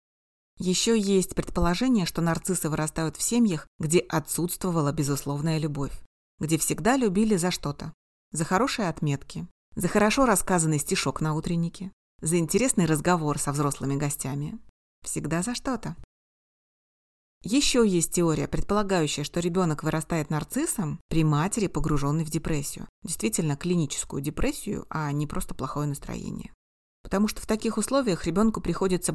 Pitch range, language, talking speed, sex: 150-195 Hz, Russian, 130 wpm, female